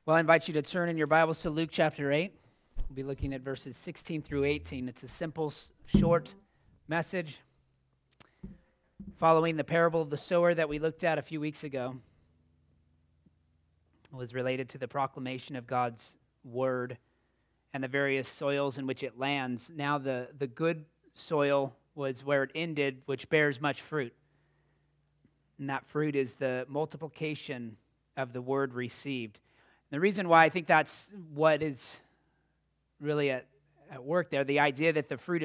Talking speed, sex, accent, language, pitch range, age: 165 wpm, male, American, English, 130-160 Hz, 30-49